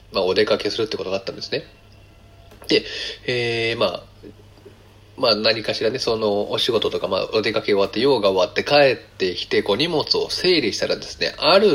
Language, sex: Japanese, male